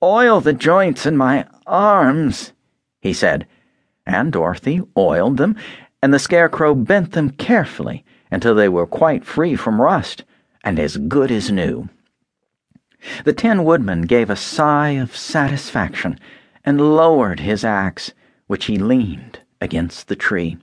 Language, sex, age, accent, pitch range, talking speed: English, male, 60-79, American, 125-180 Hz, 140 wpm